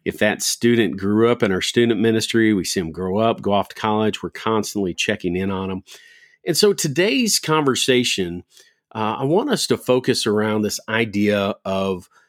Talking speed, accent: 185 wpm, American